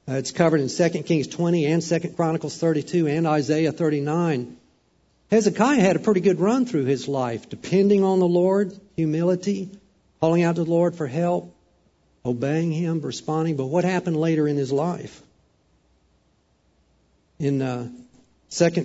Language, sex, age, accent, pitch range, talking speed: English, male, 50-69, American, 130-175 Hz, 150 wpm